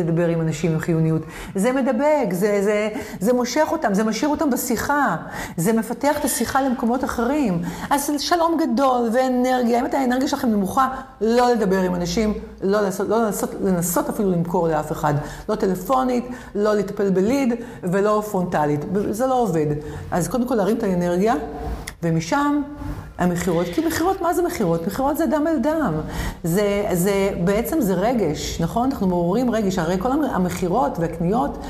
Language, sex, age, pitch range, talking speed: Hebrew, female, 50-69, 175-250 Hz, 160 wpm